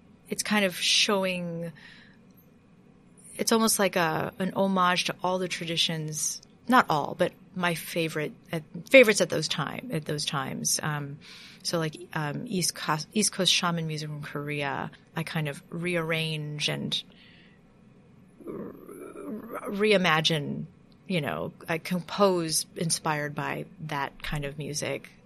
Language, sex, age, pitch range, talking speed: English, female, 30-49, 160-205 Hz, 130 wpm